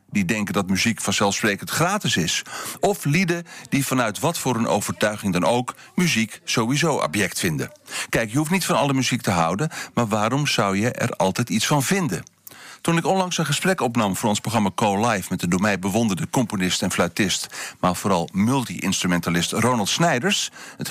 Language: Dutch